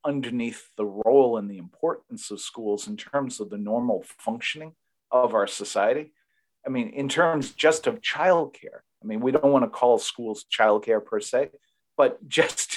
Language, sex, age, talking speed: English, male, 40-59, 180 wpm